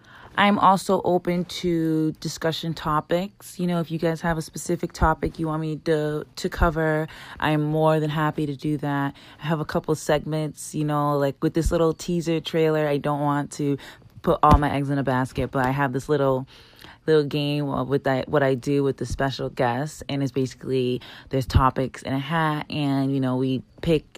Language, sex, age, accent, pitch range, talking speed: English, female, 20-39, American, 135-160 Hz, 200 wpm